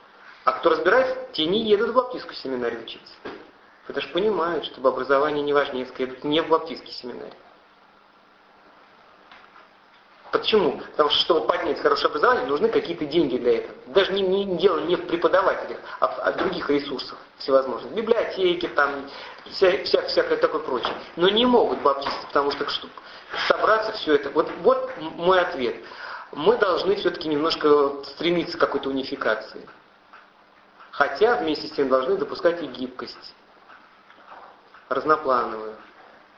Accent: native